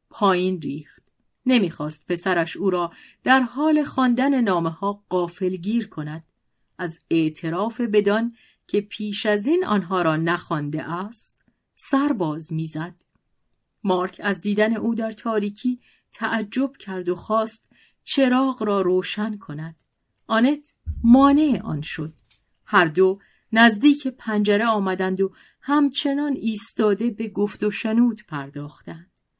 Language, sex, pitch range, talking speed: Persian, female, 165-230 Hz, 120 wpm